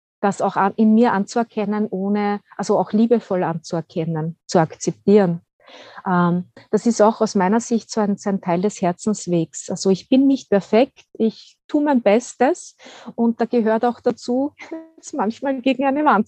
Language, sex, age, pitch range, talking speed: German, female, 30-49, 190-235 Hz, 160 wpm